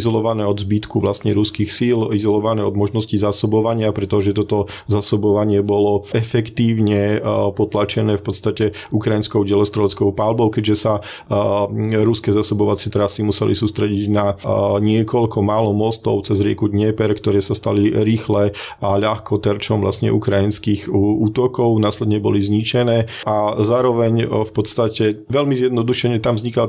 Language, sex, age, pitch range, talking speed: Slovak, male, 40-59, 100-110 Hz, 125 wpm